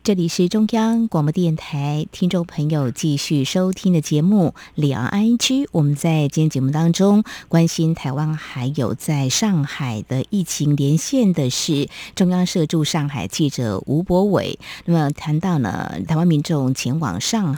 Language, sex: Chinese, female